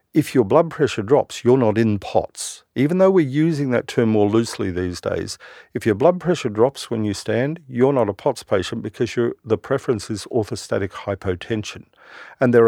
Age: 50-69